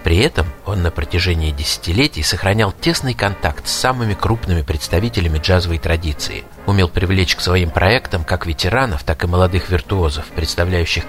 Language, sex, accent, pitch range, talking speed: Russian, male, native, 85-105 Hz, 145 wpm